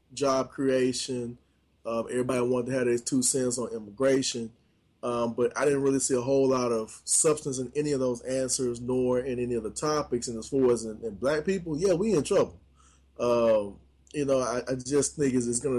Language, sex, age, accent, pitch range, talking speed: English, male, 20-39, American, 110-130 Hz, 210 wpm